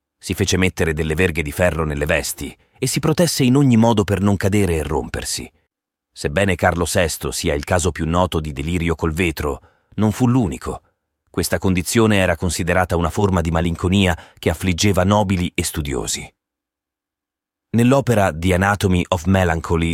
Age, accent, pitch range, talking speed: 30-49, native, 80-105 Hz, 160 wpm